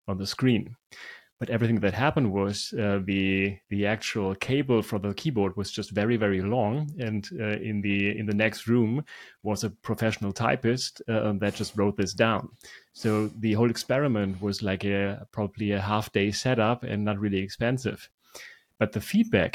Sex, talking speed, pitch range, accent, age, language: male, 180 wpm, 100-120 Hz, German, 30-49, English